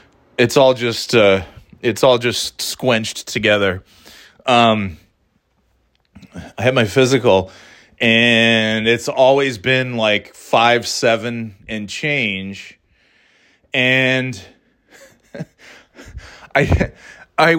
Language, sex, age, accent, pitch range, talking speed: English, male, 30-49, American, 110-135 Hz, 85 wpm